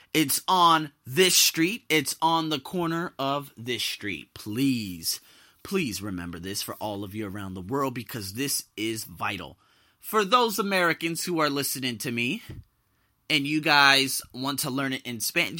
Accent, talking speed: American, 165 wpm